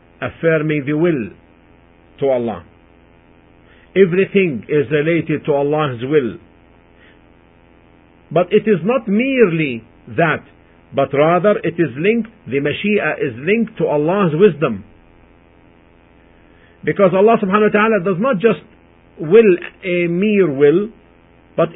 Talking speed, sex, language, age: 115 wpm, male, English, 50-69